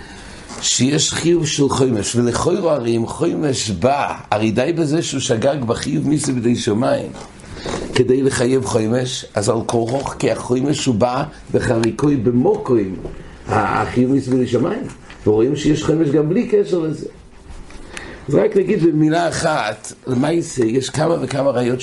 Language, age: English, 60-79